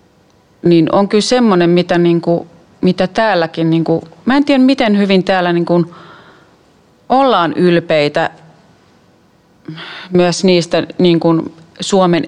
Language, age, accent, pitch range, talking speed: Finnish, 30-49, native, 165-190 Hz, 90 wpm